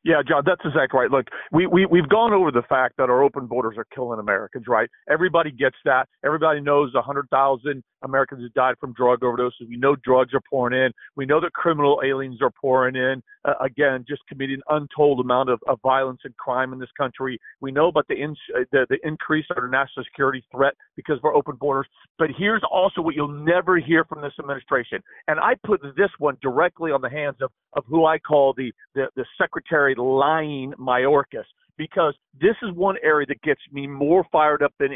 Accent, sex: American, male